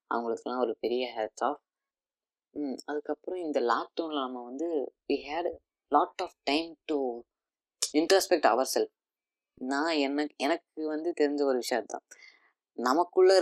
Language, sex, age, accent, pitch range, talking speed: Tamil, female, 20-39, native, 120-150 Hz, 120 wpm